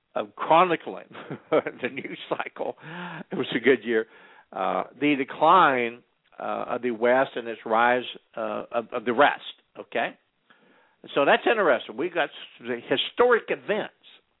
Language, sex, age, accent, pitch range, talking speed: English, male, 60-79, American, 120-145 Hz, 140 wpm